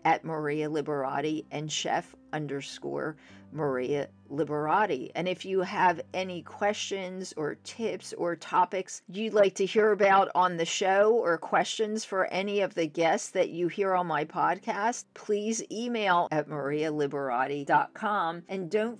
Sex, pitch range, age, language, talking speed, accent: female, 160-205 Hz, 50-69, English, 140 wpm, American